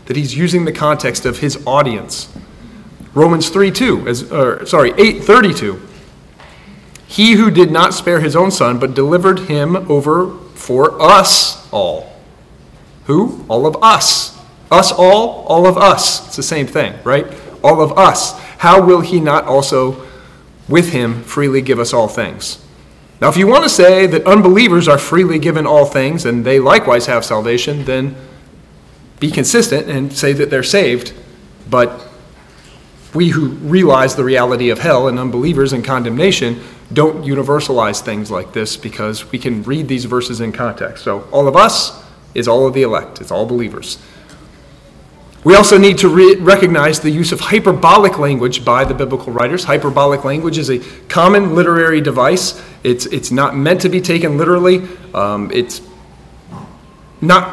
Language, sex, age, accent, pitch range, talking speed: English, male, 40-59, American, 130-180 Hz, 160 wpm